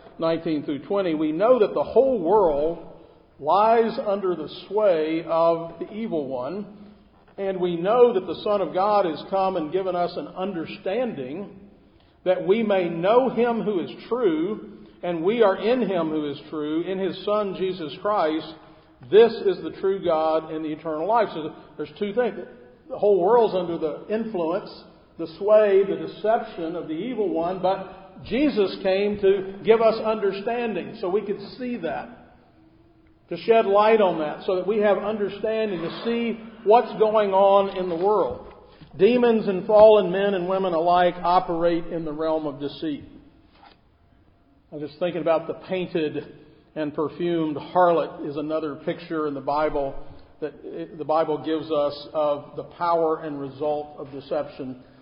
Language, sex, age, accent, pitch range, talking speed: English, male, 50-69, American, 160-210 Hz, 165 wpm